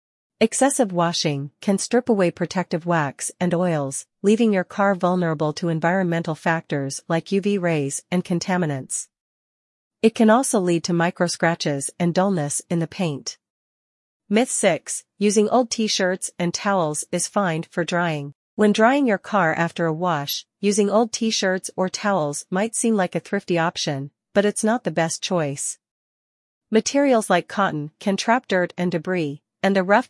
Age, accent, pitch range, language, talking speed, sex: 40-59, American, 160-205 Hz, English, 155 wpm, female